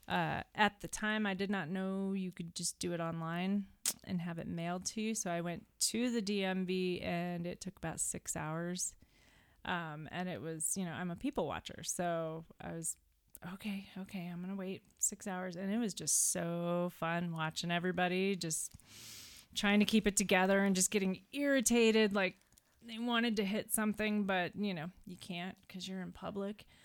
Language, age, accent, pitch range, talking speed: English, 30-49, American, 175-205 Hz, 190 wpm